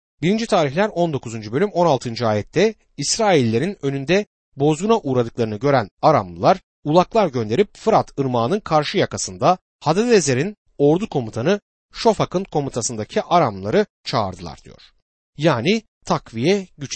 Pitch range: 115-180 Hz